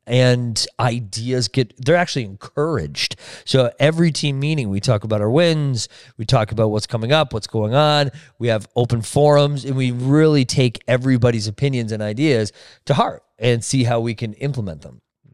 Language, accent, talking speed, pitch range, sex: English, American, 175 wpm, 115-150 Hz, male